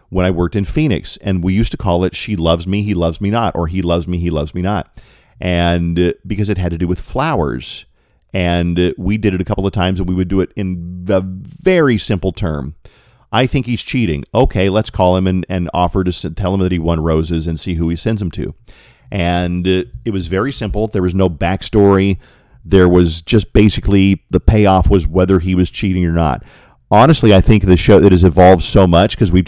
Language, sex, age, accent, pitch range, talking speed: English, male, 40-59, American, 85-105 Hz, 230 wpm